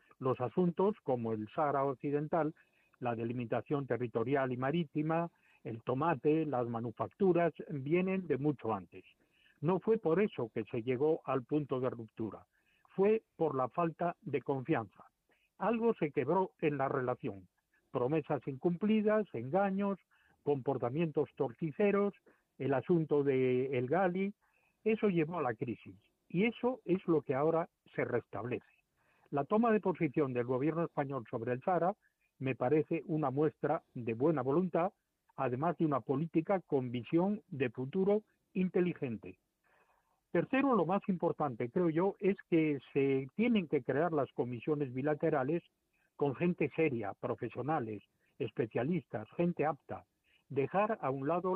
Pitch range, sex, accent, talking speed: 130-175 Hz, male, Spanish, 135 wpm